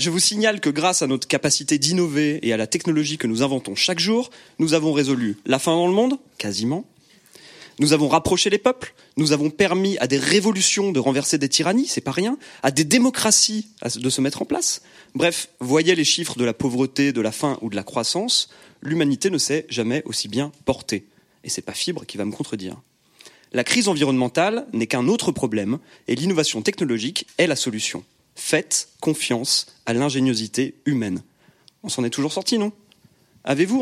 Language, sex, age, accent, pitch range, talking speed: French, male, 30-49, French, 125-185 Hz, 195 wpm